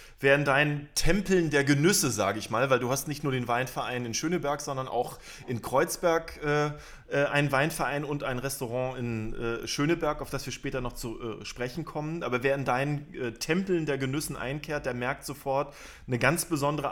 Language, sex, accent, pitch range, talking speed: German, male, German, 125-155 Hz, 180 wpm